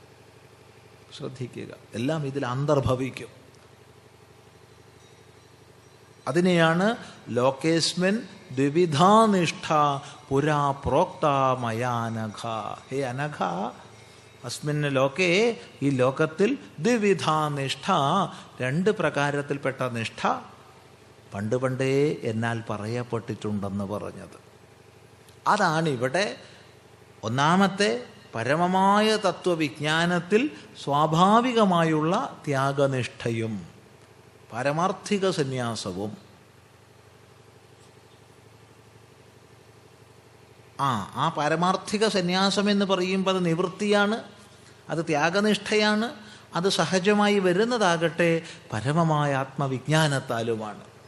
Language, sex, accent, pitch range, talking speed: Malayalam, male, native, 115-170 Hz, 55 wpm